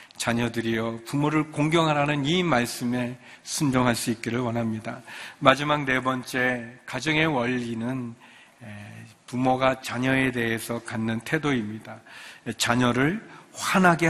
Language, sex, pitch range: Korean, male, 115-145 Hz